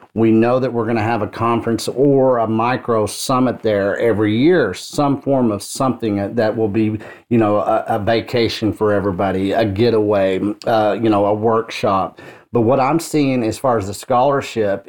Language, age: English, 40-59